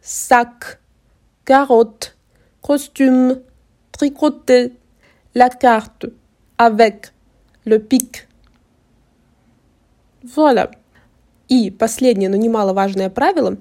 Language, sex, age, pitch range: Russian, female, 20-39, 220-275 Hz